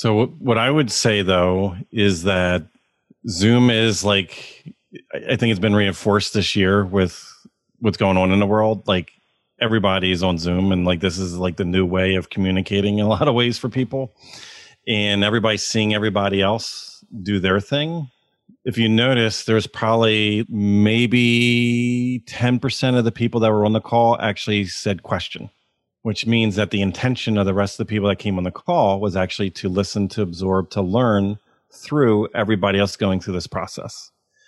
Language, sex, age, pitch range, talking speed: English, male, 40-59, 95-115 Hz, 180 wpm